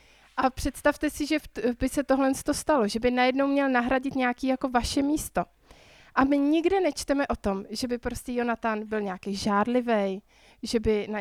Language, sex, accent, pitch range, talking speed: Czech, female, native, 215-265 Hz, 175 wpm